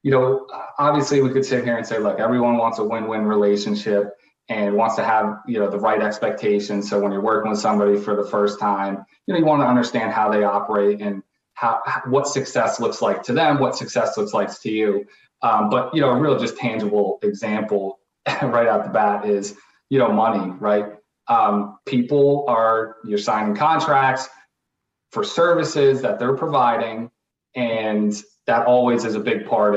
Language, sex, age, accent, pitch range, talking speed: English, male, 30-49, American, 105-135 Hz, 185 wpm